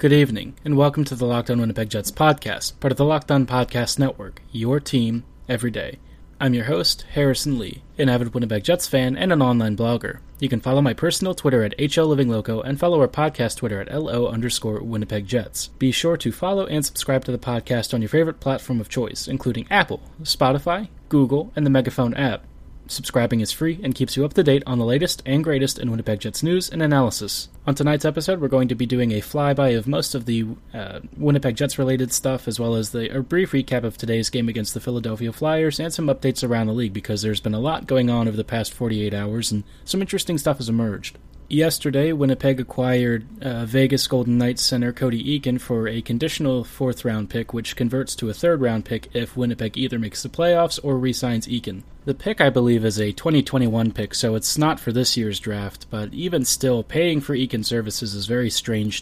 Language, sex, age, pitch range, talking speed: English, male, 20-39, 115-140 Hz, 210 wpm